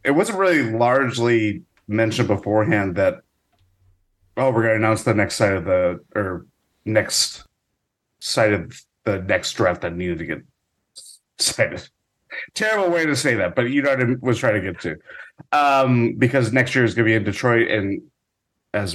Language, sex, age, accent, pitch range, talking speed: English, male, 30-49, American, 95-130 Hz, 175 wpm